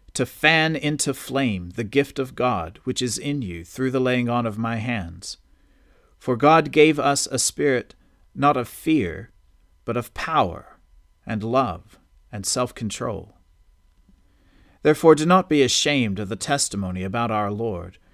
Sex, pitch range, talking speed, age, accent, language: male, 95-135 Hz, 150 wpm, 40-59, American, English